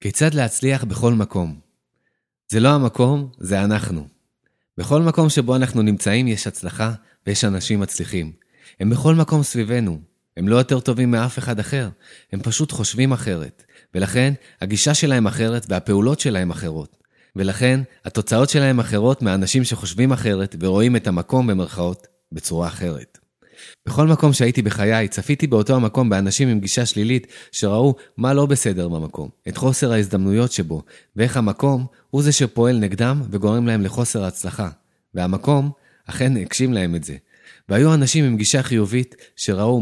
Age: 20-39